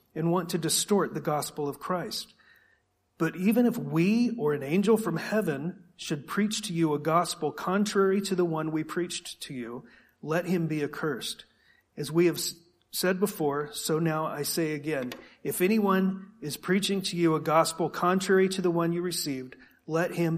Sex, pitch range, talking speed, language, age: male, 120-175 Hz, 180 wpm, English, 40-59